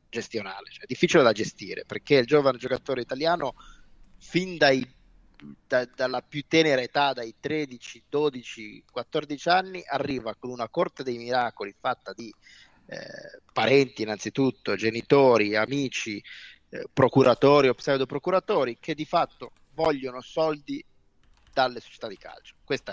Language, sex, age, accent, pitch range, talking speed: Italian, male, 30-49, native, 120-165 Hz, 125 wpm